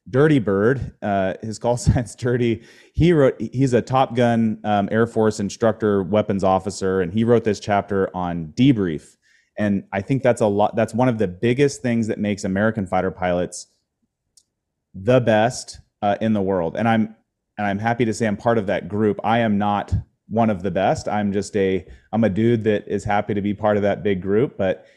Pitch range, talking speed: 100-115 Hz, 205 wpm